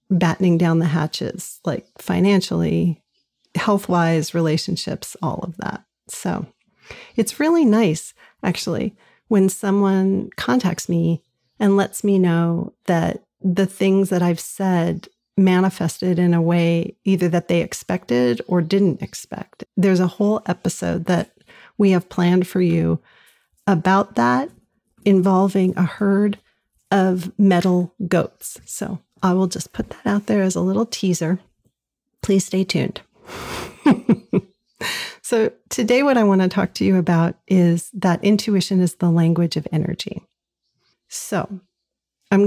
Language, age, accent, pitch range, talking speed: English, 40-59, American, 175-200 Hz, 135 wpm